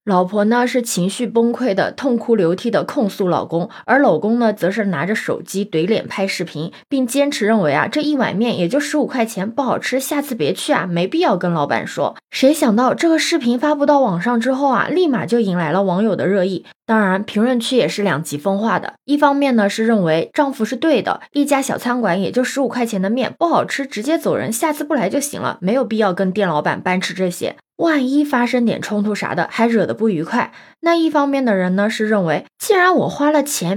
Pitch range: 195-275 Hz